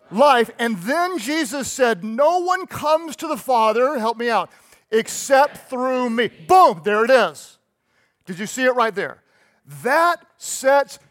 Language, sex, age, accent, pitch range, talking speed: English, male, 40-59, American, 195-260 Hz, 155 wpm